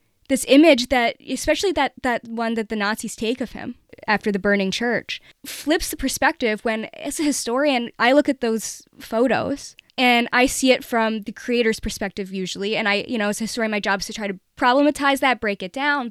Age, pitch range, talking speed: 10-29, 205-265 Hz, 210 wpm